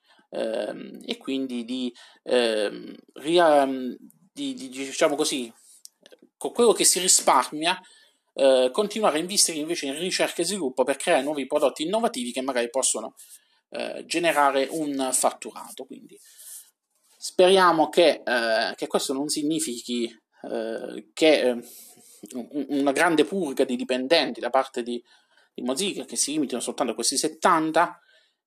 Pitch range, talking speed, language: 125-175 Hz, 130 wpm, Italian